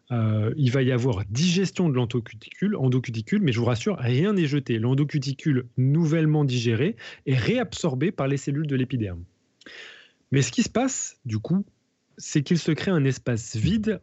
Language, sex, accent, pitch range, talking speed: French, male, French, 125-170 Hz, 165 wpm